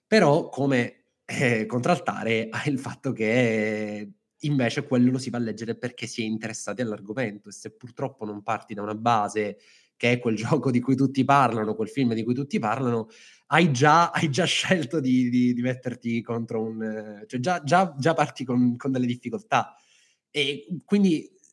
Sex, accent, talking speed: male, native, 180 wpm